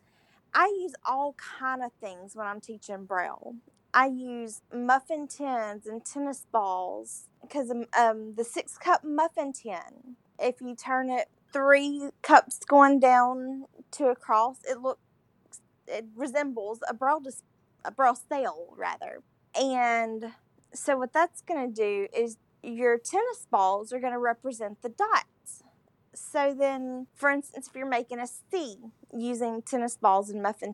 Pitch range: 225-270 Hz